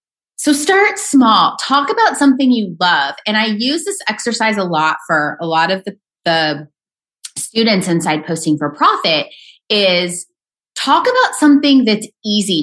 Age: 30-49